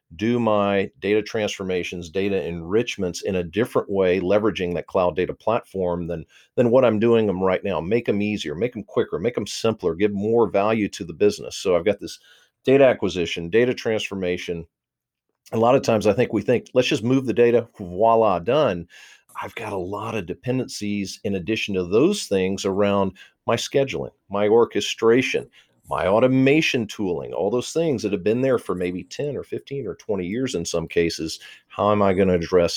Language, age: English, 50-69